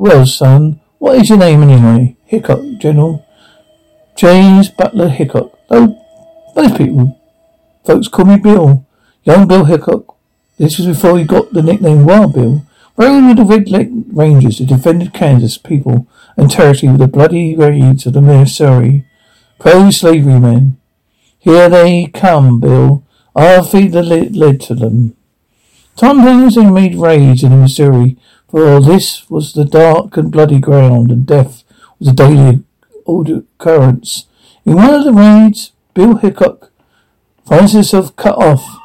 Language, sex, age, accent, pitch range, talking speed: English, male, 60-79, British, 140-200 Hz, 145 wpm